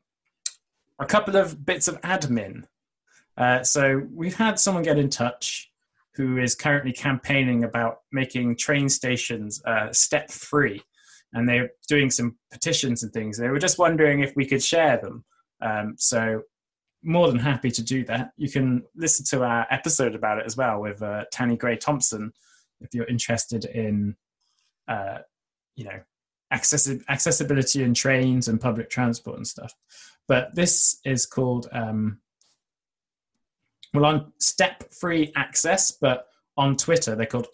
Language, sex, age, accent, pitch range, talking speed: English, male, 20-39, British, 120-150 Hz, 150 wpm